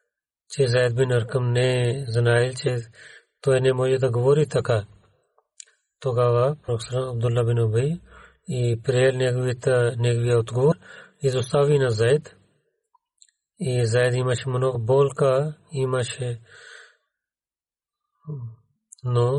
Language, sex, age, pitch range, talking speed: Bulgarian, male, 40-59, 120-150 Hz, 95 wpm